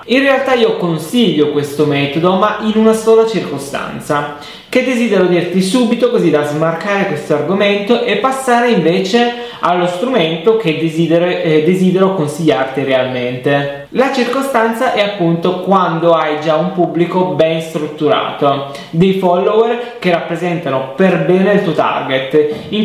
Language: Italian